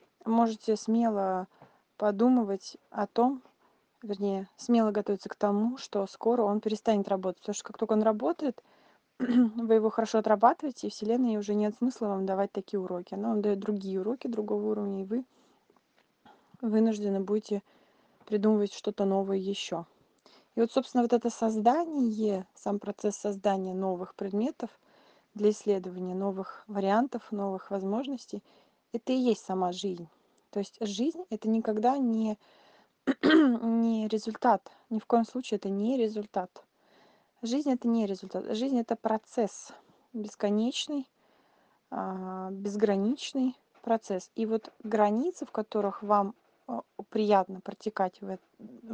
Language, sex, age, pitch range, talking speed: Russian, female, 20-39, 200-235 Hz, 130 wpm